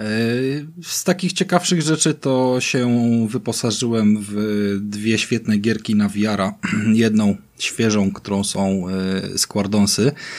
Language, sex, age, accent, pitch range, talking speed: Polish, male, 20-39, native, 95-120 Hz, 110 wpm